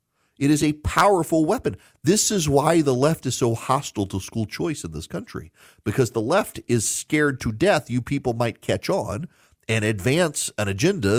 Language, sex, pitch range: English, male, 100-145 Hz